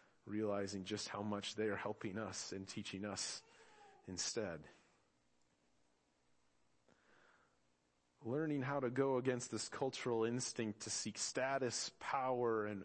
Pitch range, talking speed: 95-135 Hz, 115 wpm